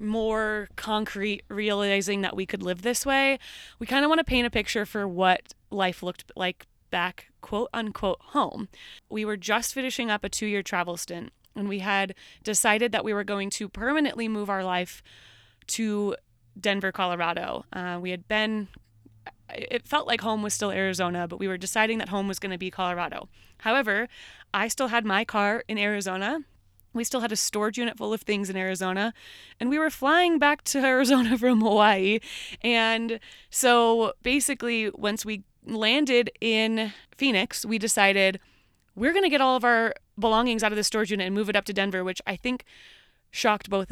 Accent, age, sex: American, 20-39, female